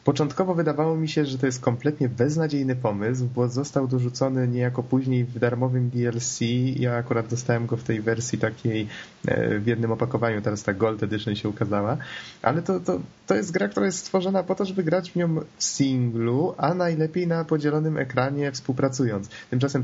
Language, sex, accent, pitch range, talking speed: Polish, male, native, 120-150 Hz, 175 wpm